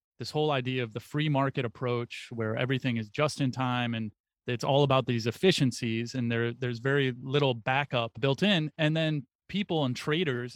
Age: 30-49